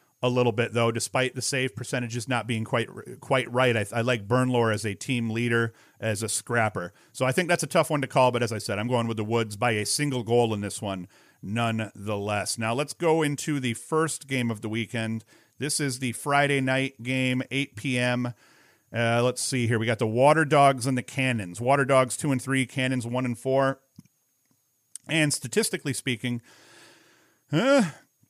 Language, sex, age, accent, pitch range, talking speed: English, male, 40-59, American, 115-135 Hz, 200 wpm